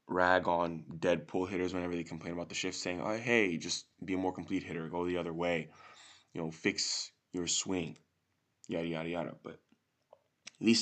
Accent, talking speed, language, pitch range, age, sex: American, 190 wpm, English, 85-110 Hz, 20-39, male